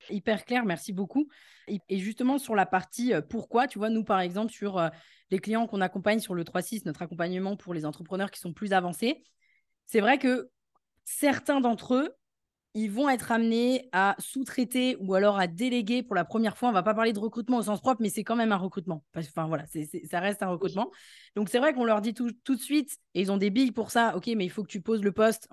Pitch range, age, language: 185-240 Hz, 20-39, French